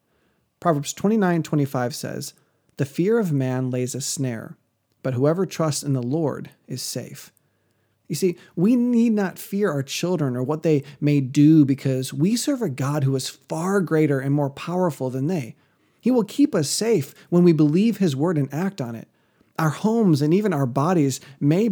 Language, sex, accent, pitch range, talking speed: English, male, American, 130-180 Hz, 180 wpm